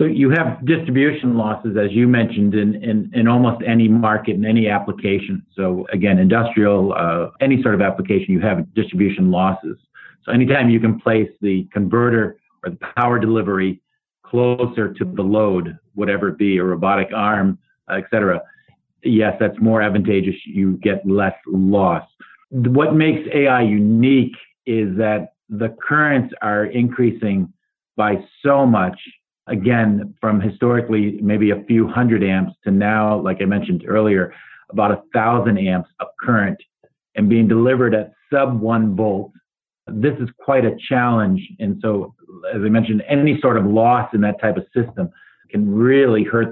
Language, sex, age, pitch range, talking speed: English, male, 50-69, 105-125 Hz, 155 wpm